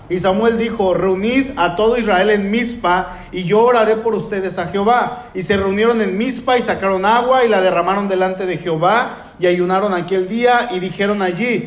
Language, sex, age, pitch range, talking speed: Spanish, male, 40-59, 185-225 Hz, 190 wpm